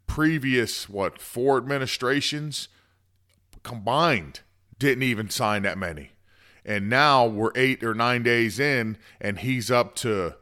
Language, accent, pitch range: English, American, 105-135 Hz